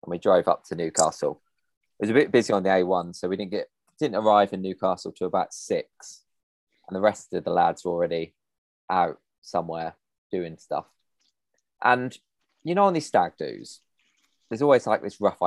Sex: male